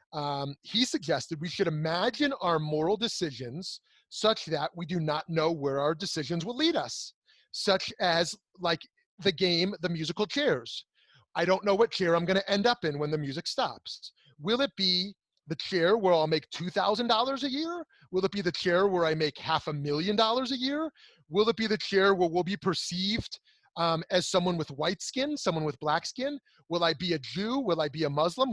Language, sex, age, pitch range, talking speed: English, male, 30-49, 160-215 Hz, 205 wpm